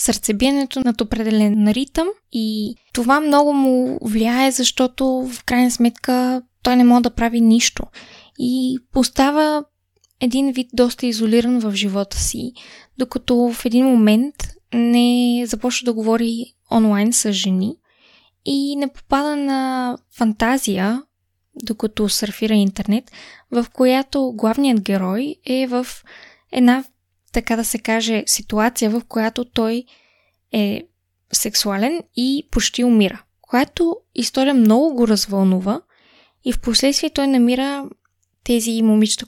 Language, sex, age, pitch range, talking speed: Bulgarian, female, 20-39, 220-265 Hz, 120 wpm